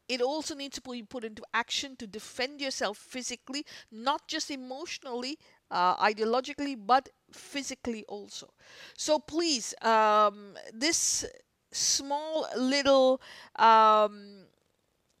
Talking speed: 105 wpm